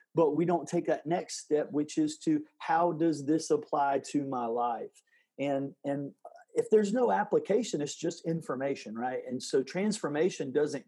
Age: 40-59